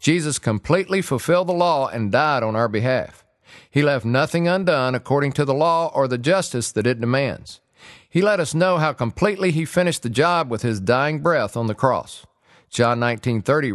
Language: English